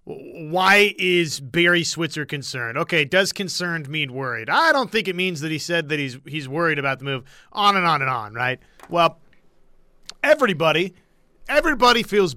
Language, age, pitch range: English, 30-49, 150-185 Hz